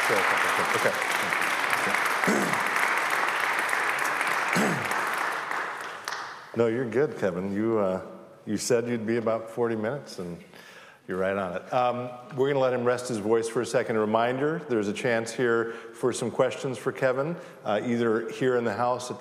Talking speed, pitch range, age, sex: 170 wpm, 105-125 Hz, 50-69, male